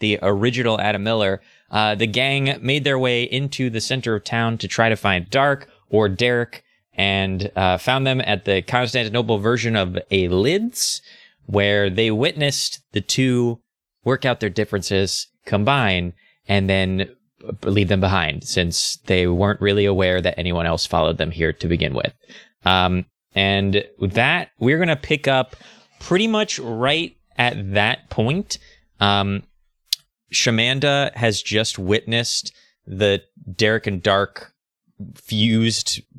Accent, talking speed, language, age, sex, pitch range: American, 140 wpm, English, 20-39, male, 95-120 Hz